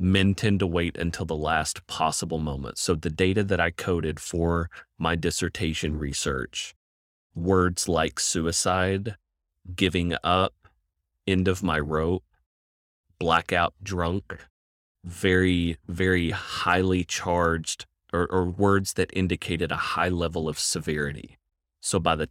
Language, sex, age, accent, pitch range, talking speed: English, male, 30-49, American, 75-95 Hz, 125 wpm